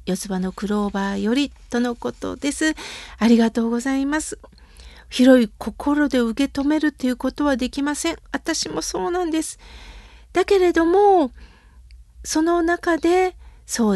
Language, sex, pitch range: Japanese, female, 255-350 Hz